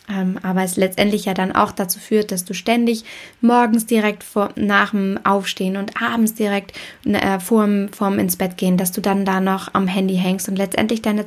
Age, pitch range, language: 20-39, 185-215 Hz, German